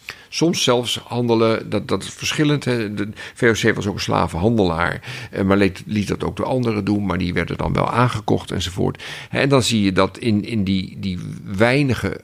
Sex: male